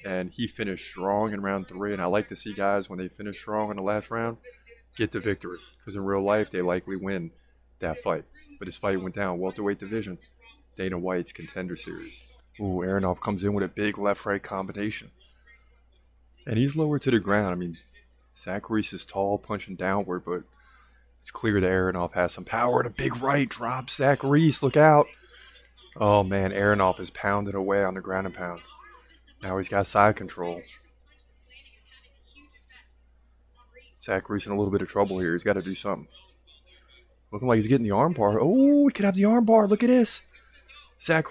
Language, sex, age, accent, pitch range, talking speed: English, male, 20-39, American, 95-135 Hz, 190 wpm